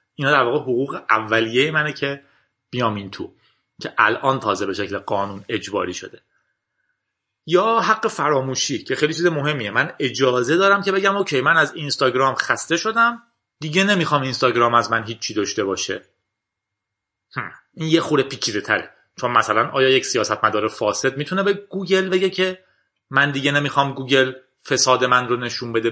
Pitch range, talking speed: 115-155 Hz, 160 wpm